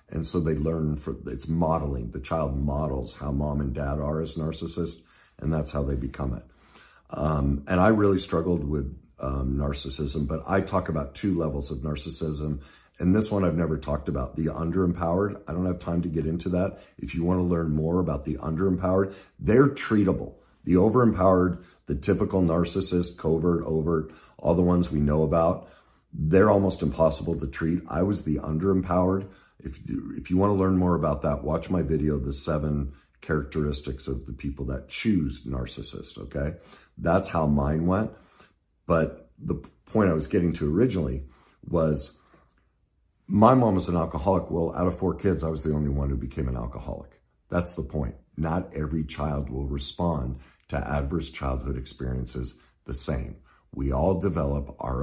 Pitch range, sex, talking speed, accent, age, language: 70-90 Hz, male, 175 wpm, American, 50-69, English